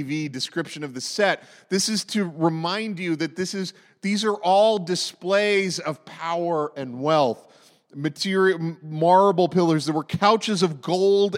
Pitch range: 160-200 Hz